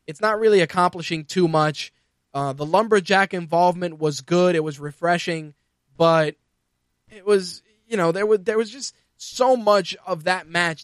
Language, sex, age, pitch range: English, male, 20-39, 150-185 Hz